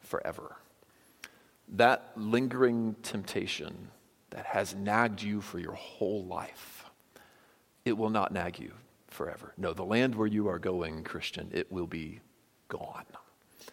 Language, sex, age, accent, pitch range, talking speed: English, male, 40-59, American, 95-120 Hz, 130 wpm